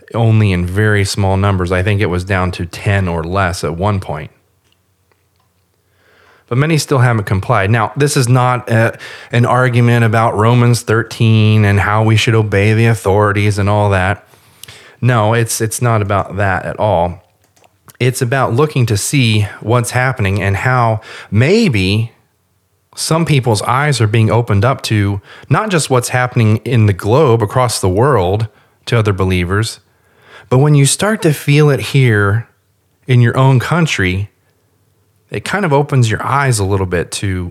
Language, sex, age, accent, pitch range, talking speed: English, male, 30-49, American, 100-120 Hz, 165 wpm